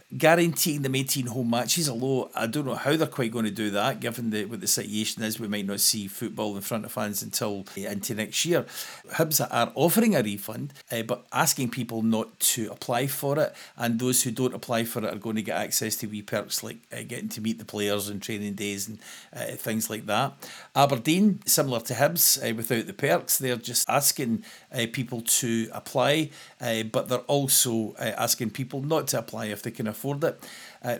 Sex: male